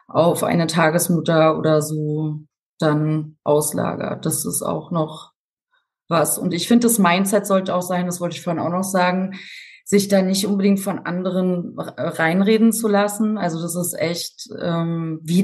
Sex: female